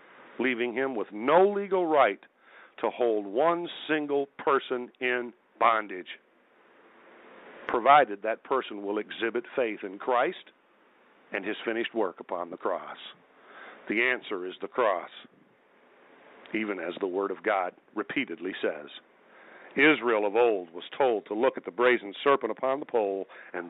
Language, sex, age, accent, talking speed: English, male, 50-69, American, 140 wpm